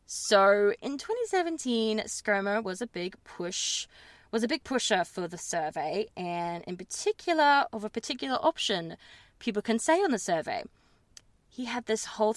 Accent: Australian